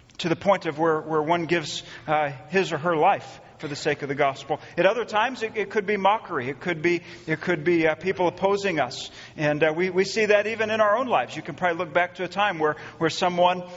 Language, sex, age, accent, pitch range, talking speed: English, male, 40-59, American, 160-220 Hz, 255 wpm